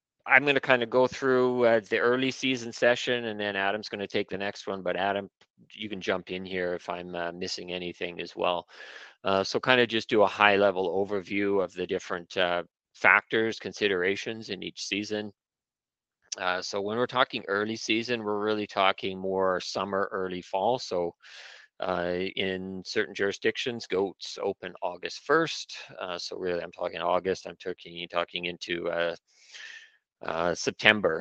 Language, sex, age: English, male, 40-59